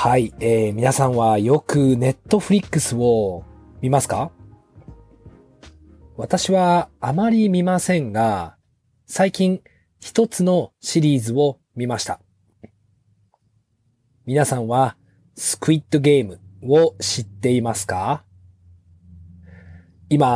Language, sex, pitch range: Japanese, male, 105-150 Hz